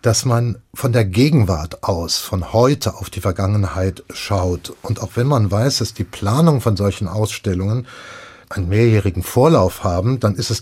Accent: German